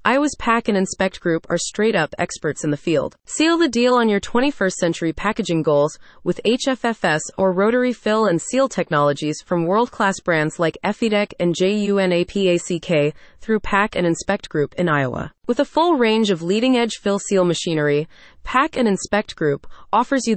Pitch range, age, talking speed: 170-235 Hz, 30-49, 165 wpm